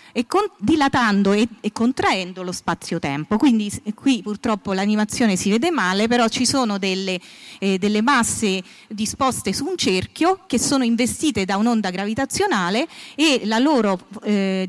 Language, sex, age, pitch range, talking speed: Italian, female, 30-49, 195-250 Hz, 145 wpm